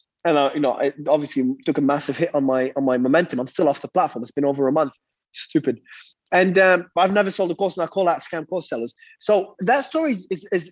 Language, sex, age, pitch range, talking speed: English, male, 20-39, 160-205 Hz, 260 wpm